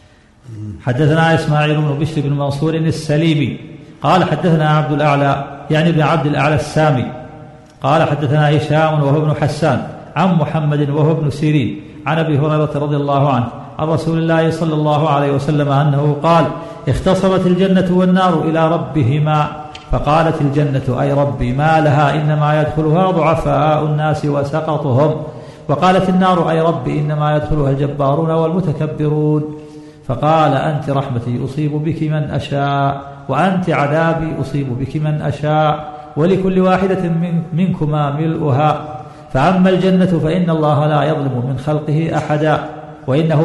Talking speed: 130 wpm